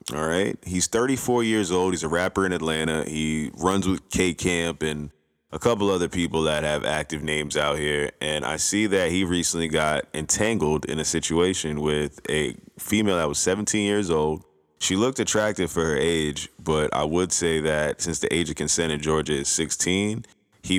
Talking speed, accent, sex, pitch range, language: 195 wpm, American, male, 75-95 Hz, English